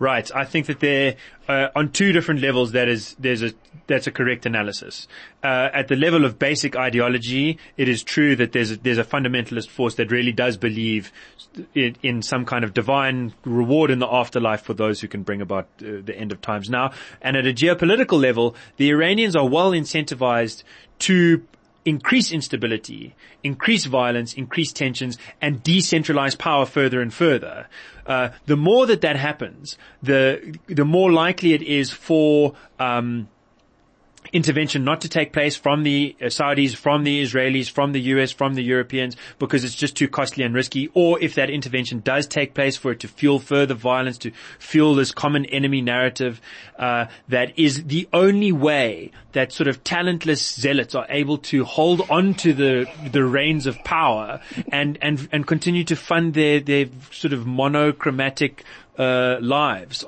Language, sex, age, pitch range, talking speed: English, male, 20-39, 125-150 Hz, 175 wpm